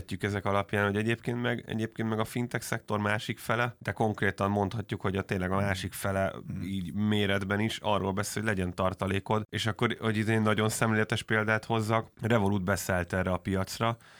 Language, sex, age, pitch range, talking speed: Hungarian, male, 30-49, 95-110 Hz, 175 wpm